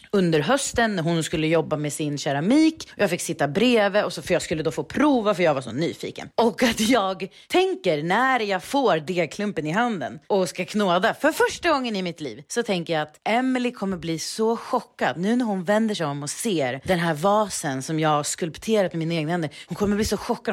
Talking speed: 225 wpm